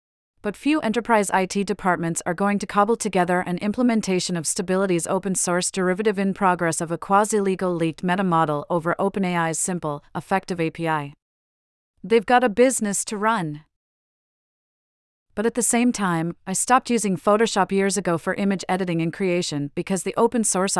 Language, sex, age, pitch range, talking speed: English, female, 40-59, 160-205 Hz, 155 wpm